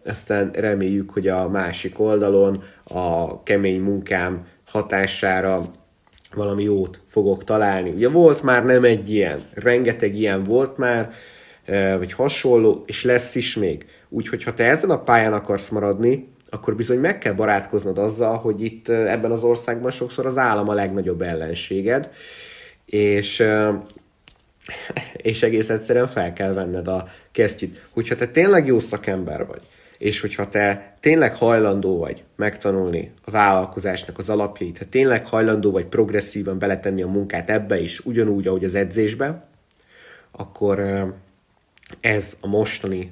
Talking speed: 140 wpm